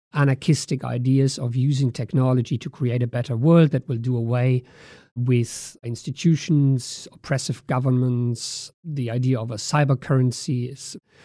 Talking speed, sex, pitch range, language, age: 135 wpm, male, 125-150 Hz, English, 50-69